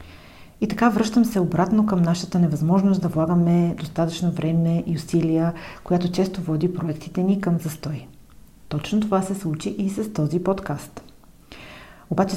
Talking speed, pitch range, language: 145 wpm, 160-195 Hz, Bulgarian